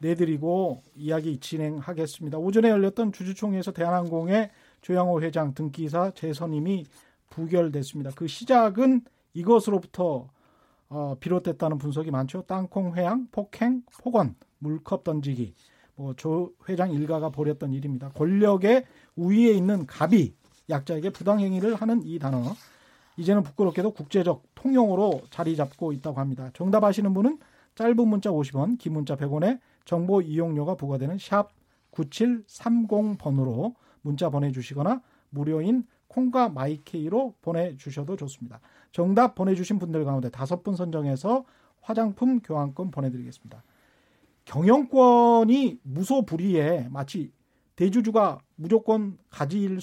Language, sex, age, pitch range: Korean, male, 40-59, 150-210 Hz